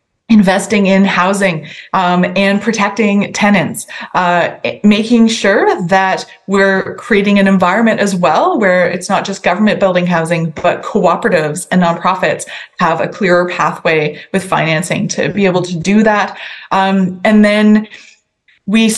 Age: 20-39